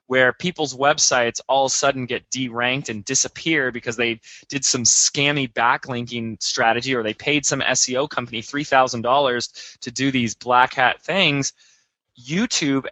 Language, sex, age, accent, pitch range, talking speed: English, male, 20-39, American, 120-145 Hz, 150 wpm